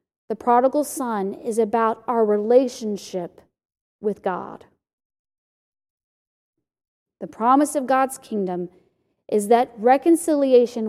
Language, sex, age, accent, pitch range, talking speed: English, female, 40-59, American, 190-265 Hz, 95 wpm